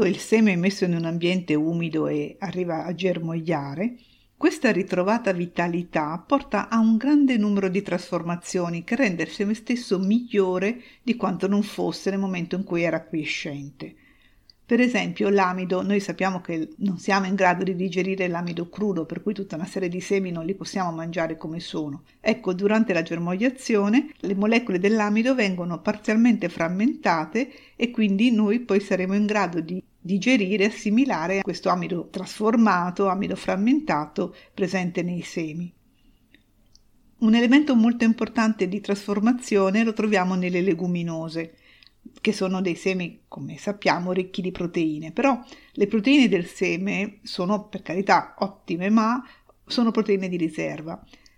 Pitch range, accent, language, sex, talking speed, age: 175-220 Hz, native, Italian, female, 150 wpm, 50-69